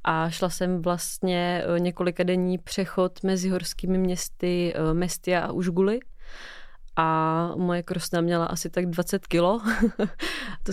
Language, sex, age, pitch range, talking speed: Czech, female, 20-39, 175-185 Hz, 120 wpm